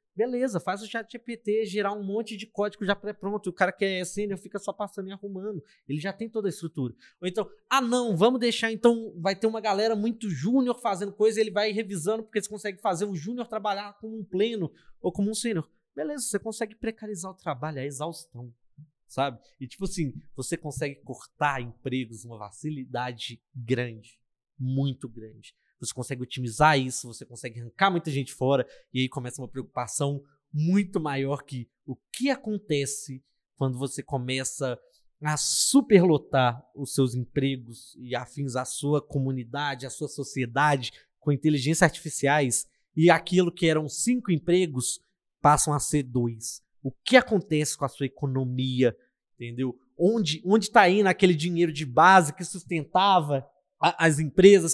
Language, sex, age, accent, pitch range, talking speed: Portuguese, male, 20-39, Brazilian, 135-205 Hz, 170 wpm